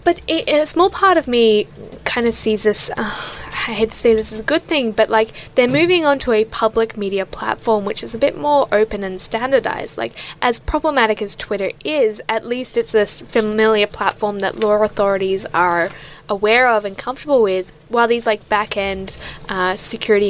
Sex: female